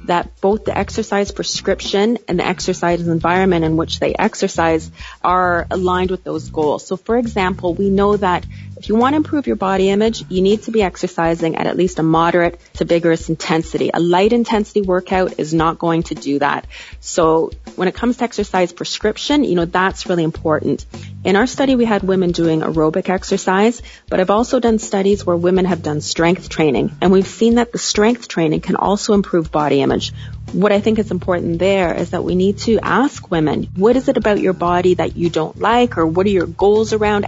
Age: 30-49